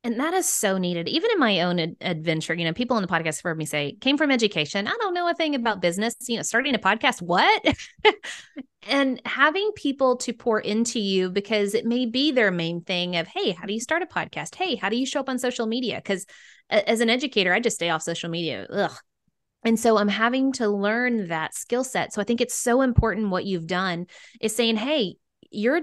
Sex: female